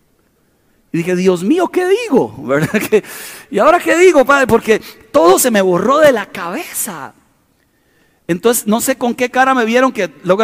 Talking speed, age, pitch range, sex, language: 180 wpm, 40-59, 185-265 Hz, male, Spanish